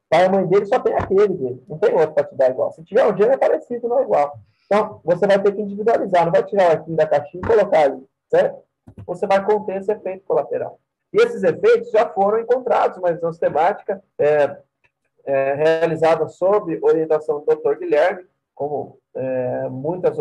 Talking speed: 195 wpm